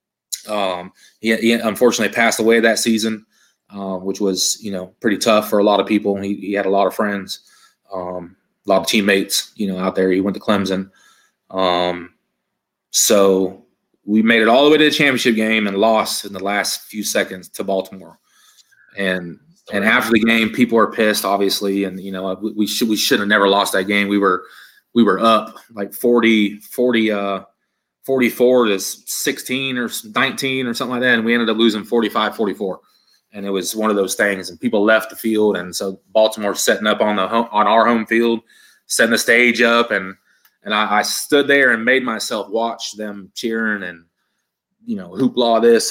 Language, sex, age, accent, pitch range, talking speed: English, male, 20-39, American, 100-115 Hz, 200 wpm